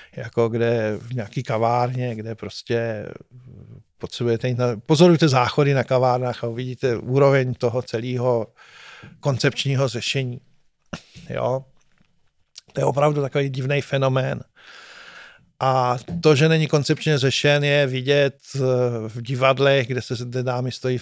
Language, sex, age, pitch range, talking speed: Czech, male, 50-69, 125-140 Hz, 115 wpm